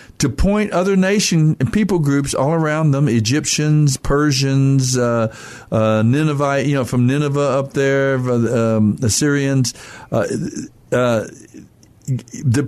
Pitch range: 130-165 Hz